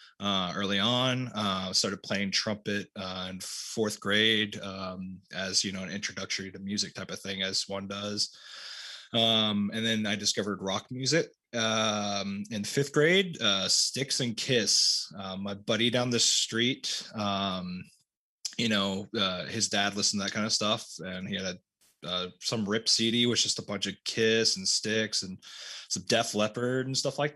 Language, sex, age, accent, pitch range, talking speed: English, male, 20-39, American, 95-115 Hz, 180 wpm